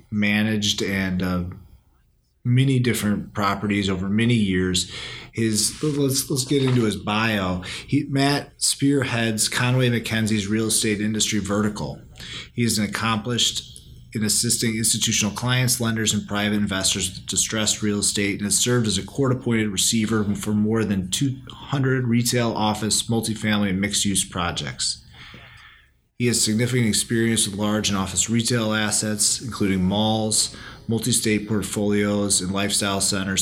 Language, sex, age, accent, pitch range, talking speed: English, male, 30-49, American, 100-120 Hz, 135 wpm